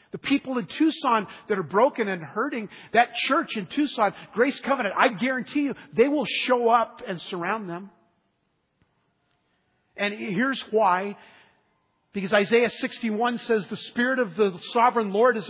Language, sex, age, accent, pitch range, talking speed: English, male, 50-69, American, 195-245 Hz, 150 wpm